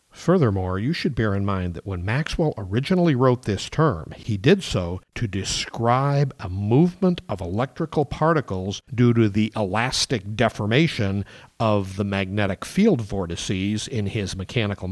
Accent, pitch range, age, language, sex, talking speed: American, 100-125 Hz, 50-69, English, male, 145 wpm